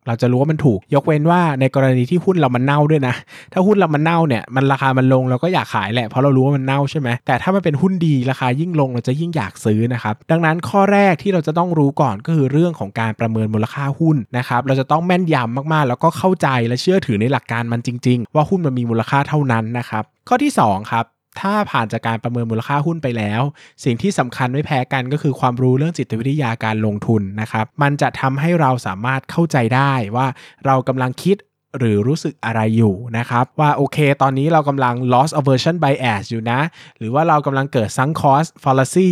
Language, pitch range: Thai, 120-150 Hz